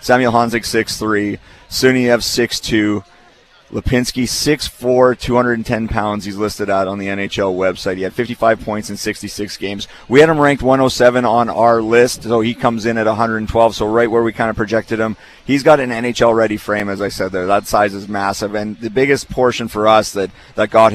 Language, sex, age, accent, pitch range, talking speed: English, male, 30-49, American, 105-115 Hz, 190 wpm